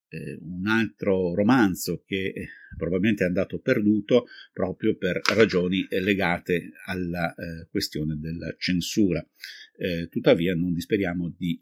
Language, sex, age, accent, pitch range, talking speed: Italian, male, 50-69, native, 85-100 Hz, 120 wpm